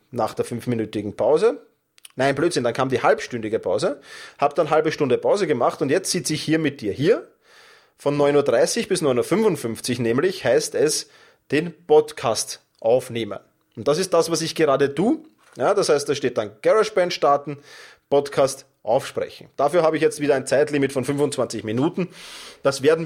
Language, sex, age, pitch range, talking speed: German, male, 30-49, 130-190 Hz, 175 wpm